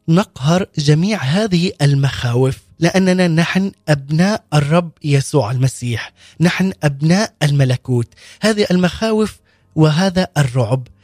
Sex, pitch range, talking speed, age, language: male, 145-185 Hz, 90 wpm, 20-39, Arabic